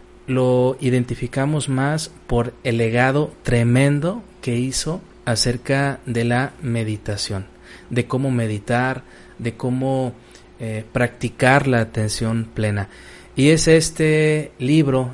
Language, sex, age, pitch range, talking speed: Spanish, male, 30-49, 115-140 Hz, 105 wpm